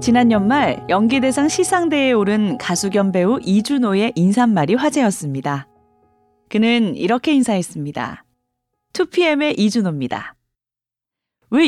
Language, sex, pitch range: Korean, female, 185-275 Hz